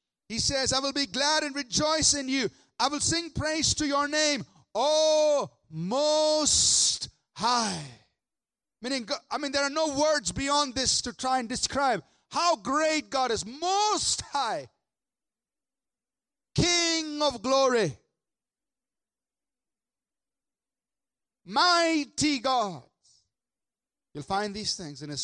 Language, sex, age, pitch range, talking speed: English, male, 40-59, 215-290 Hz, 120 wpm